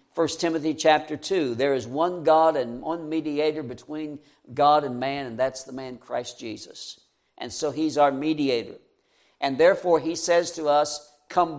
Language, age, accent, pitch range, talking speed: English, 60-79, American, 135-185 Hz, 170 wpm